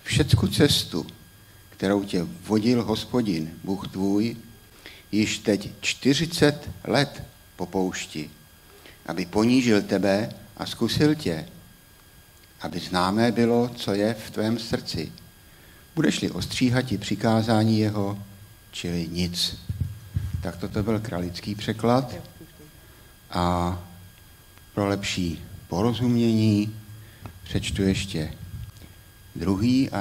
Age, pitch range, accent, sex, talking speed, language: 60-79, 95-115 Hz, native, male, 90 wpm, Czech